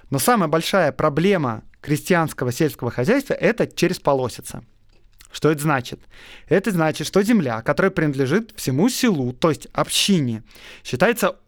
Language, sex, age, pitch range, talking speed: Russian, male, 20-39, 145-190 Hz, 130 wpm